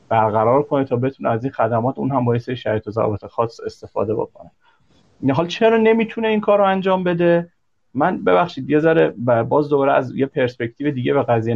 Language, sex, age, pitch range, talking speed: Persian, male, 30-49, 120-145 Hz, 190 wpm